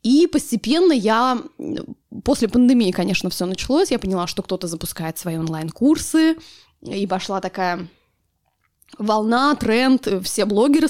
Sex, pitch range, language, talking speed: female, 185-250 Hz, Russian, 120 wpm